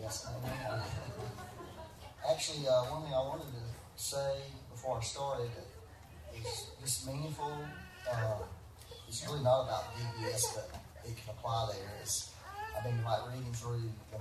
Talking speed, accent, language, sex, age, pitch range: 150 wpm, American, English, male, 40-59, 105-130 Hz